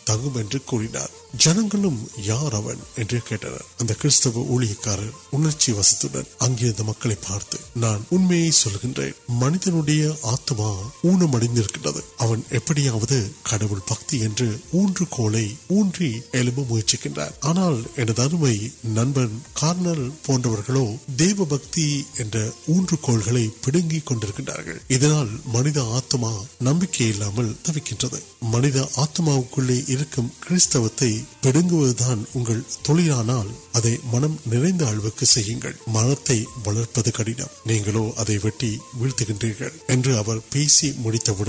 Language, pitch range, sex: Urdu, 115-150 Hz, male